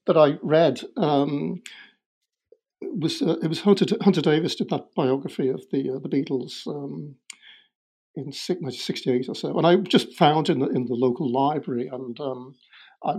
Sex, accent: male, British